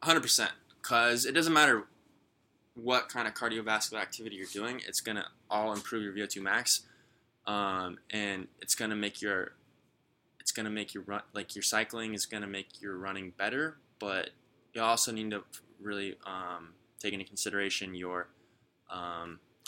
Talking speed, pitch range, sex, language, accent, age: 160 wpm, 90-115 Hz, male, English, American, 10-29